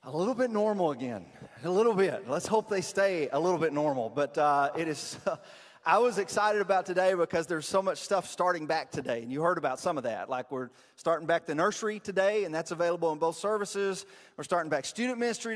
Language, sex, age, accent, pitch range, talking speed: English, male, 30-49, American, 150-195 Hz, 230 wpm